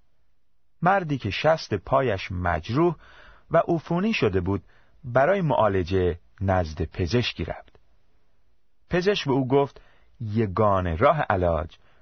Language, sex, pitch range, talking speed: Persian, male, 95-145 Hz, 105 wpm